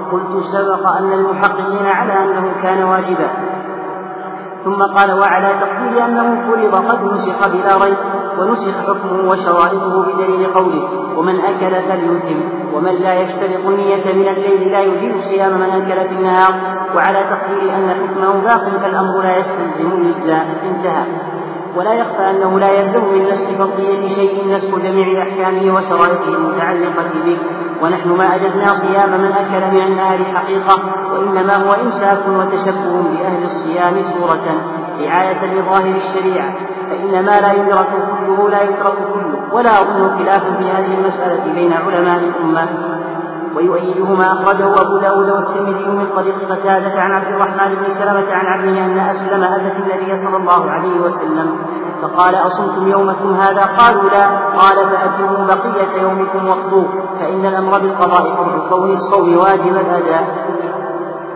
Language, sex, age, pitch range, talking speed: Arabic, male, 40-59, 185-195 Hz, 140 wpm